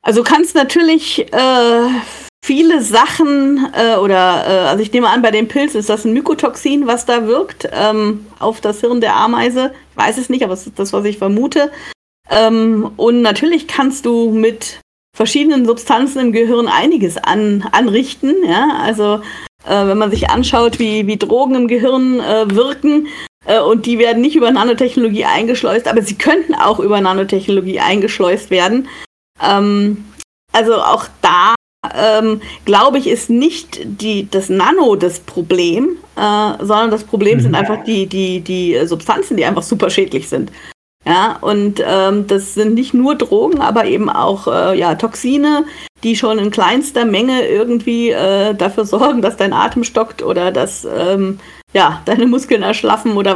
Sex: female